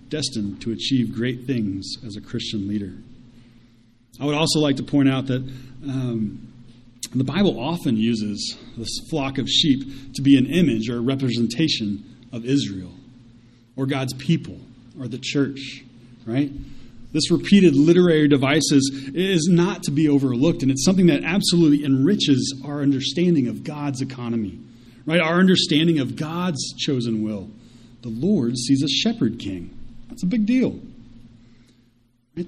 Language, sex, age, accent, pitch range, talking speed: English, male, 30-49, American, 120-160 Hz, 150 wpm